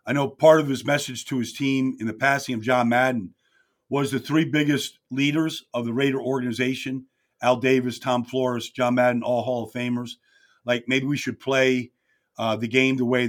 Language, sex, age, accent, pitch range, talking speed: English, male, 50-69, American, 125-155 Hz, 200 wpm